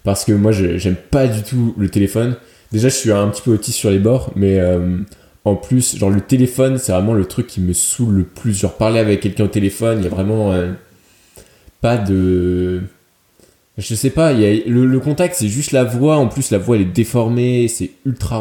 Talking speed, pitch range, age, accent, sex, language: 230 wpm, 95-115 Hz, 20-39, French, male, French